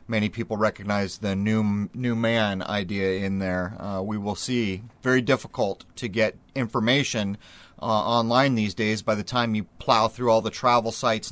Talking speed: 175 wpm